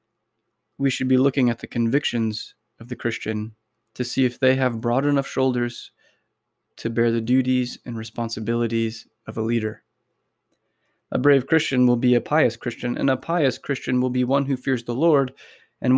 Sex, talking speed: male, 175 wpm